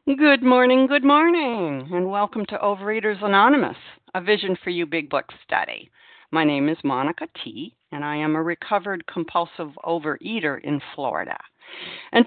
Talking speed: 150 wpm